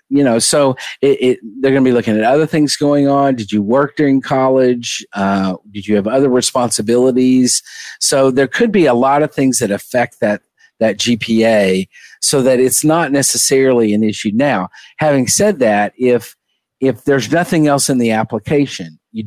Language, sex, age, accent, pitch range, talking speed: English, male, 50-69, American, 105-135 Hz, 185 wpm